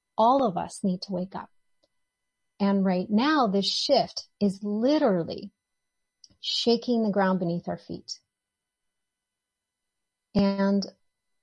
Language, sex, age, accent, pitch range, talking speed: English, female, 30-49, American, 175-215 Hz, 110 wpm